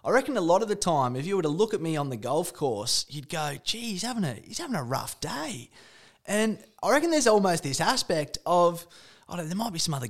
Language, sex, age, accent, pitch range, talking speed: English, male, 20-39, Australian, 150-195 Hz, 255 wpm